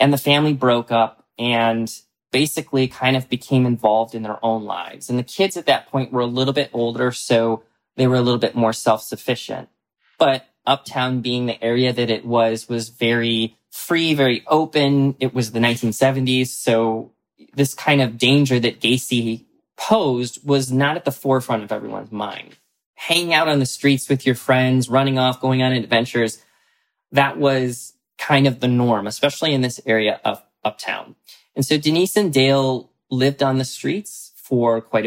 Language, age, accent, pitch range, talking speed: English, 20-39, American, 115-135 Hz, 175 wpm